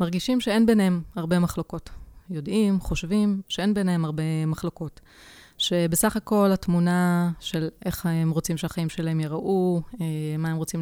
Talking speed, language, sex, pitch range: 135 wpm, Hebrew, female, 155-190 Hz